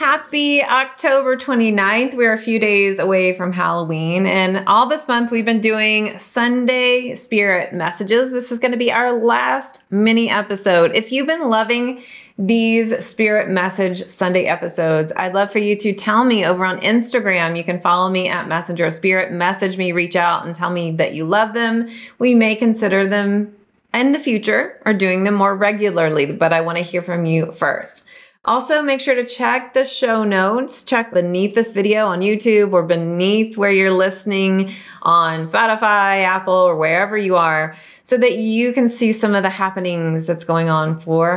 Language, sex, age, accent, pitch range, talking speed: English, female, 30-49, American, 180-230 Hz, 180 wpm